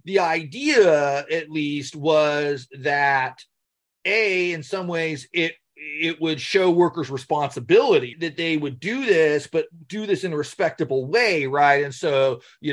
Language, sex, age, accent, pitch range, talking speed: English, male, 40-59, American, 135-175 Hz, 150 wpm